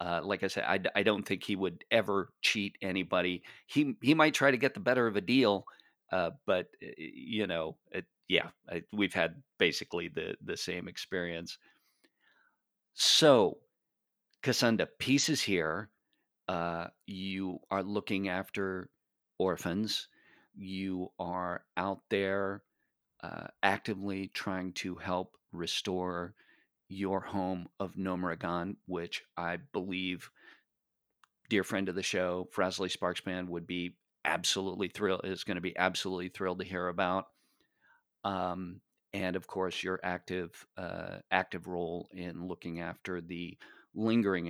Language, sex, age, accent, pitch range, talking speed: English, male, 40-59, American, 90-105 Hz, 135 wpm